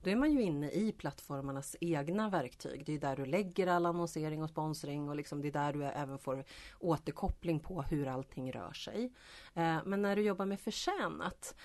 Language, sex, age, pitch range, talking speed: Swedish, female, 30-49, 150-195 Hz, 195 wpm